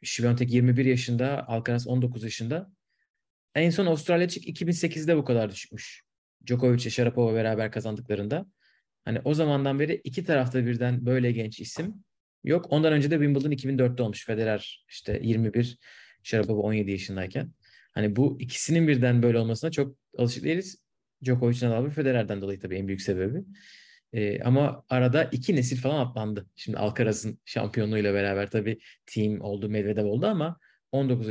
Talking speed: 145 wpm